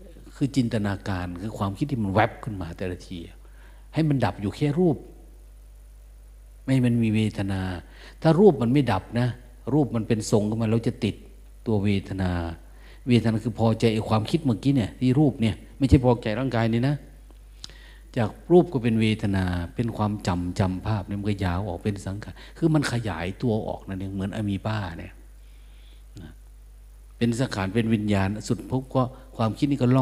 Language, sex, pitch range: Thai, male, 95-125 Hz